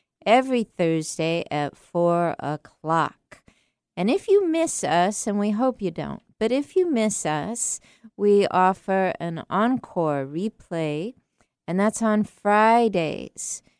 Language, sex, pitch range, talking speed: English, female, 160-205 Hz, 125 wpm